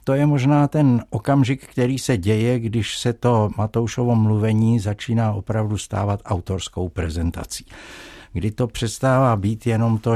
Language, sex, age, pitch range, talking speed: Czech, male, 60-79, 95-125 Hz, 140 wpm